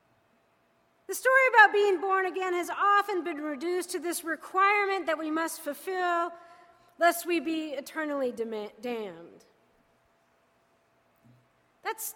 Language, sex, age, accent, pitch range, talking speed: English, female, 40-59, American, 300-390 Hz, 115 wpm